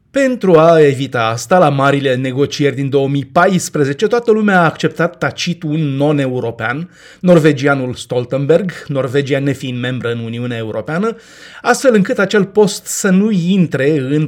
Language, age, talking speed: Romanian, 30-49, 135 wpm